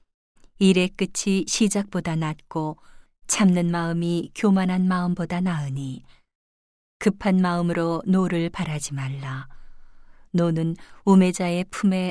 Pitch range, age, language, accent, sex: 150-190 Hz, 40-59, Korean, native, female